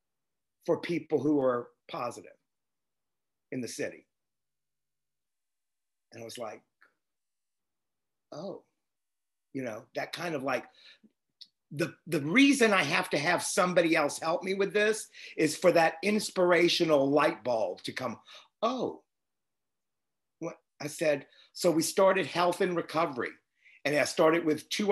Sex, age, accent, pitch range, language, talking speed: male, 50-69, American, 145-185 Hz, English, 130 wpm